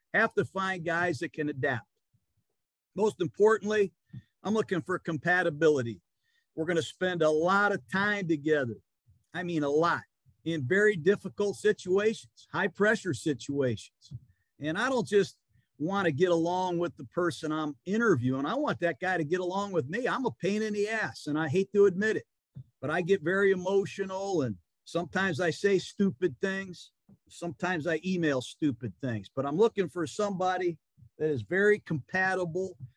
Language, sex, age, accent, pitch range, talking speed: English, male, 50-69, American, 145-195 Hz, 165 wpm